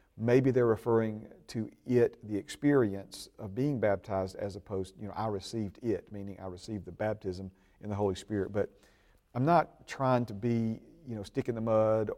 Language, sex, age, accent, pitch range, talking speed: English, male, 40-59, American, 100-125 Hz, 190 wpm